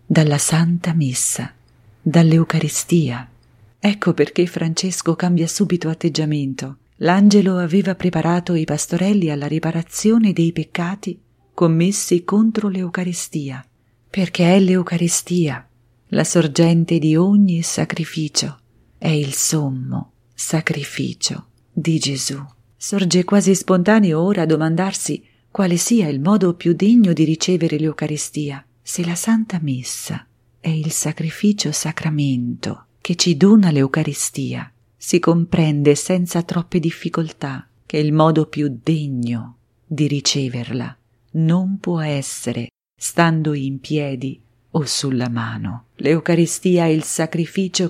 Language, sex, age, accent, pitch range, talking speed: English, female, 40-59, Italian, 140-180 Hz, 110 wpm